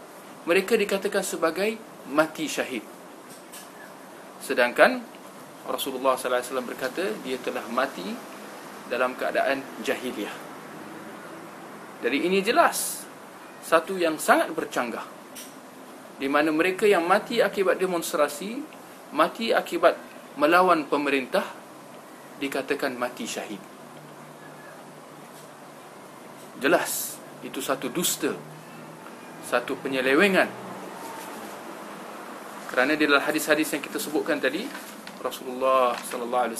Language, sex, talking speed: Malay, male, 90 wpm